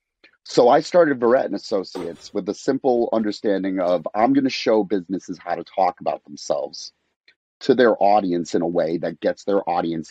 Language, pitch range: English, 95-130 Hz